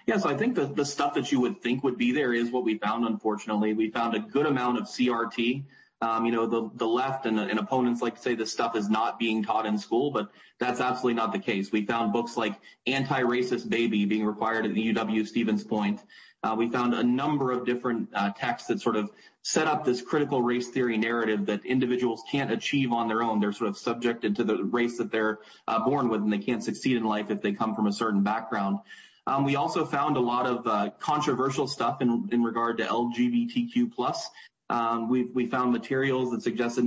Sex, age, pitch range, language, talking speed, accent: male, 20-39, 110-130 Hz, English, 225 wpm, American